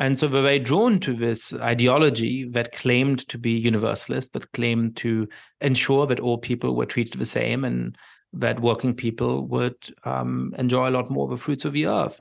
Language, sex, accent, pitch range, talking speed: English, male, German, 115-135 Hz, 195 wpm